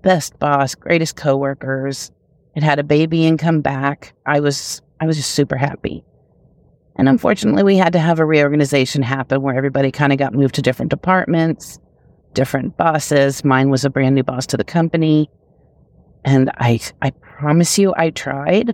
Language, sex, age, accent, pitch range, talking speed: English, female, 40-59, American, 135-165 Hz, 175 wpm